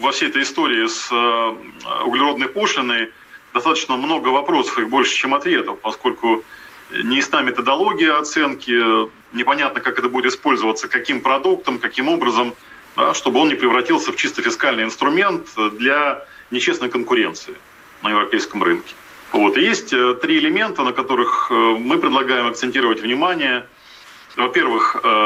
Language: Russian